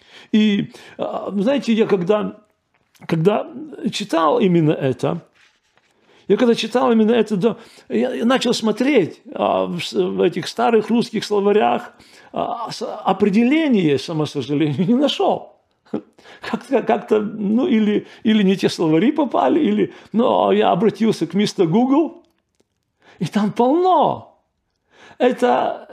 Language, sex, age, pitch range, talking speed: Russian, male, 40-59, 195-245 Hz, 115 wpm